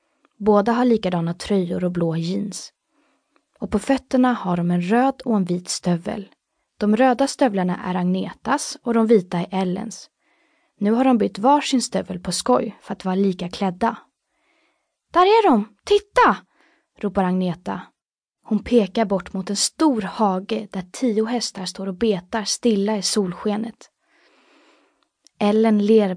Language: Swedish